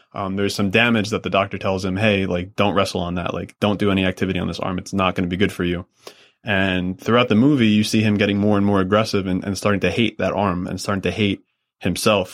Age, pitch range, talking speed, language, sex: 20-39, 95-110 Hz, 265 wpm, English, male